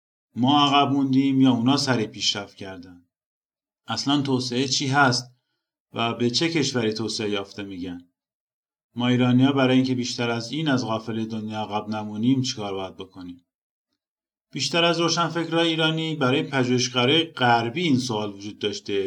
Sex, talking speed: male, 150 wpm